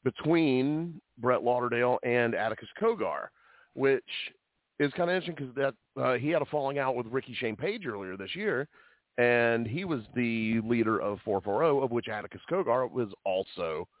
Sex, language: male, English